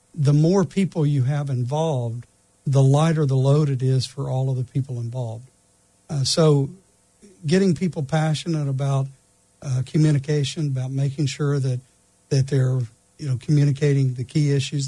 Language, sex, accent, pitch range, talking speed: English, male, American, 125-150 Hz, 155 wpm